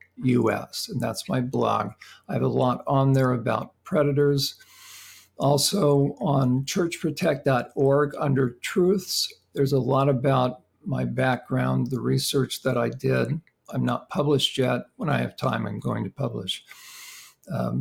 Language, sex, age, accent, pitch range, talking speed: English, male, 50-69, American, 125-150 Hz, 140 wpm